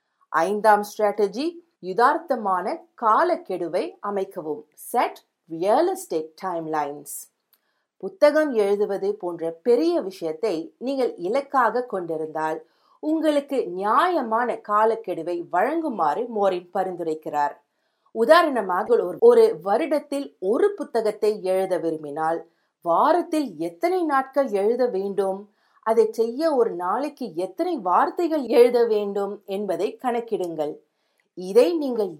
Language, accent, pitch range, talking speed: Tamil, native, 180-285 Hz, 75 wpm